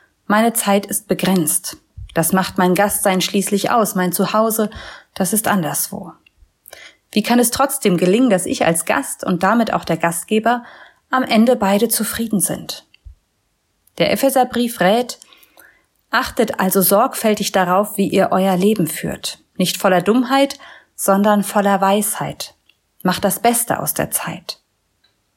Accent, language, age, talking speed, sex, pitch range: German, German, 30-49, 135 wpm, female, 180-225 Hz